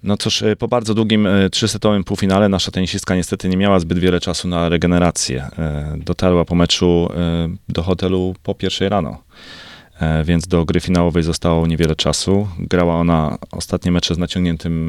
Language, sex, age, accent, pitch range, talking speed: Polish, male, 30-49, native, 85-100 Hz, 155 wpm